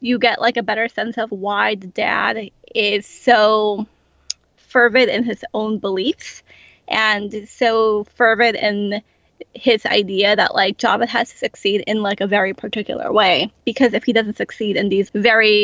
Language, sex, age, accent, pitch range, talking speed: English, female, 20-39, American, 205-245 Hz, 165 wpm